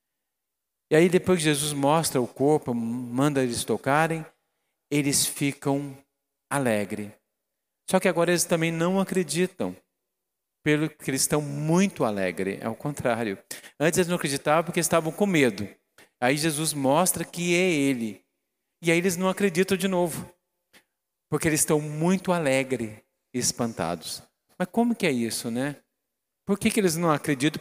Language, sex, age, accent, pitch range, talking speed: Portuguese, male, 40-59, Brazilian, 130-180 Hz, 150 wpm